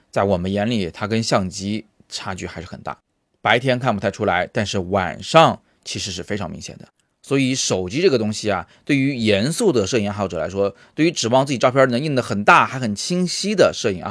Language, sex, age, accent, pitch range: Chinese, male, 30-49, native, 100-130 Hz